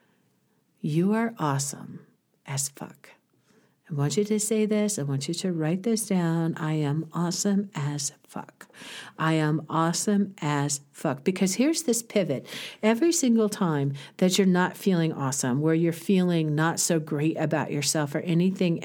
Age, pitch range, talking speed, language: 50-69, 160-205 Hz, 160 wpm, English